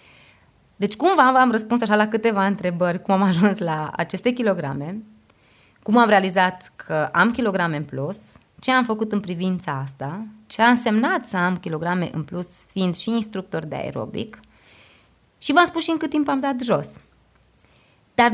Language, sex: Romanian, female